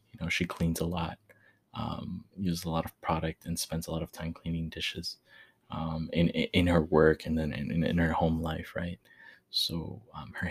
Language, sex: English, male